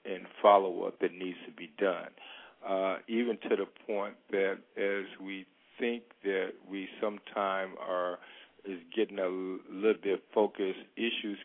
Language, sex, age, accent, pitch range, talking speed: English, male, 50-69, American, 95-110 Hz, 150 wpm